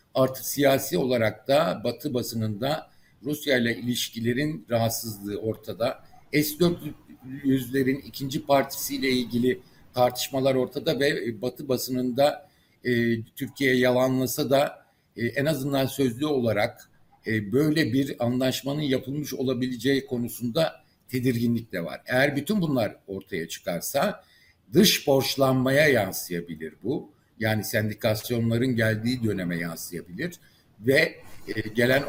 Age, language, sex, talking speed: 60-79, Turkish, male, 105 wpm